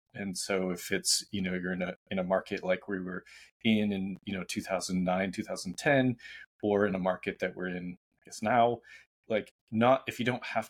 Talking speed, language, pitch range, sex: 210 wpm, English, 95-110 Hz, male